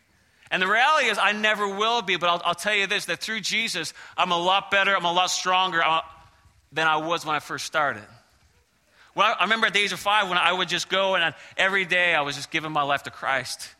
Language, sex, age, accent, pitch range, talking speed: English, male, 30-49, American, 150-195 Hz, 245 wpm